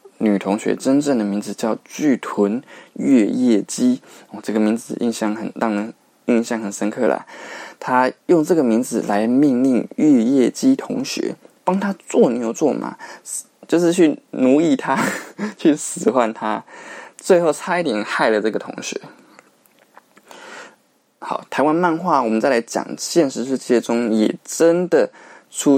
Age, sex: 20-39, male